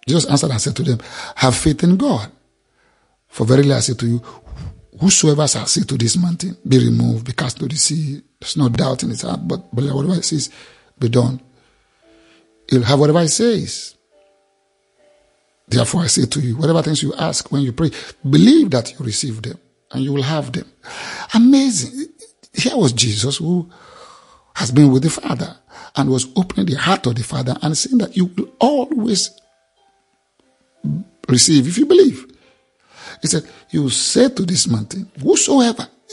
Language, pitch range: English, 120-190 Hz